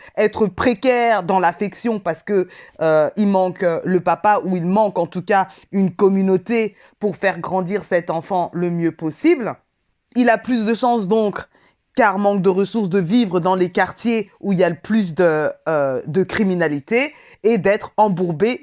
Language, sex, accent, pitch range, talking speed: French, female, French, 170-220 Hz, 175 wpm